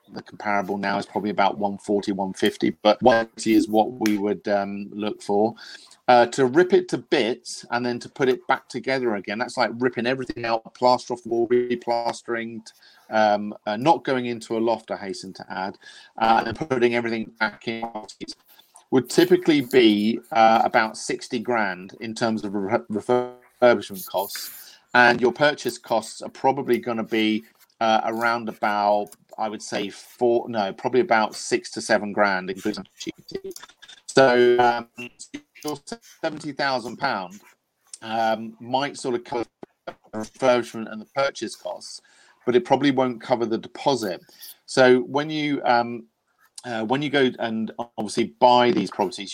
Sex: male